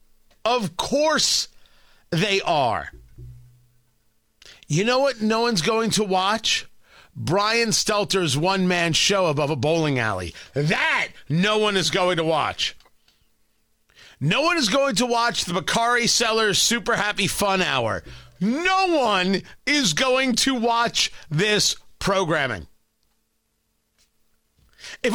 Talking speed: 115 wpm